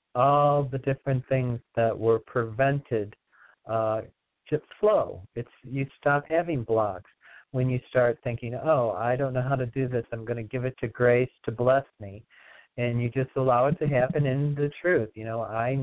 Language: English